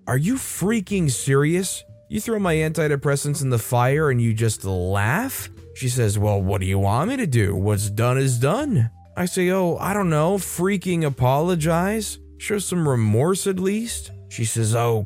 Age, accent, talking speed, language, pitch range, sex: 20-39, American, 180 wpm, English, 115-160 Hz, male